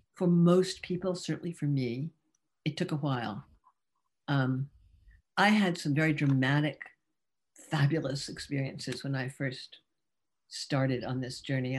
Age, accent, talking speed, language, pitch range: 60-79, American, 125 wpm, English, 130-155 Hz